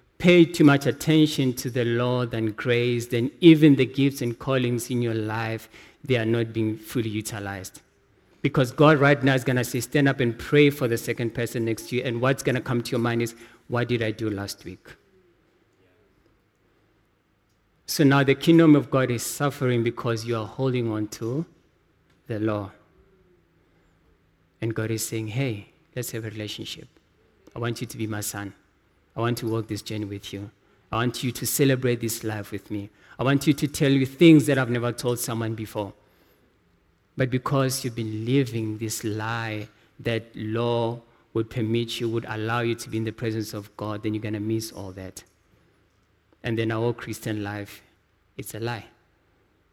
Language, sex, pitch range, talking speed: English, male, 105-125 Hz, 190 wpm